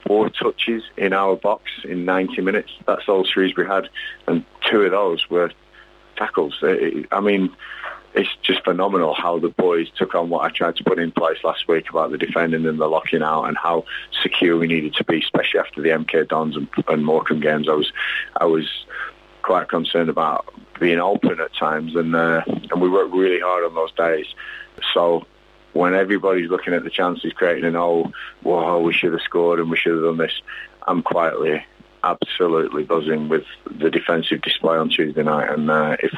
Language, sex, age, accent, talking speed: English, male, 30-49, British, 195 wpm